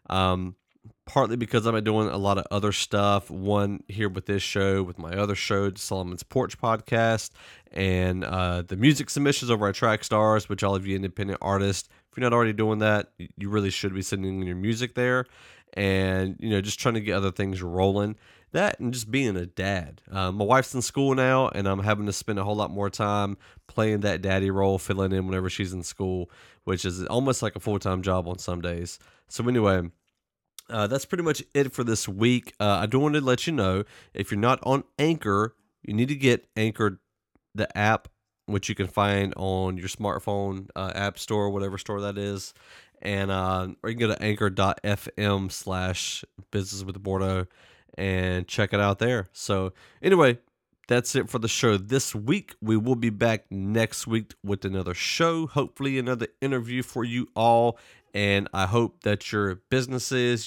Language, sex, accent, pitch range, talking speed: English, male, American, 95-115 Hz, 190 wpm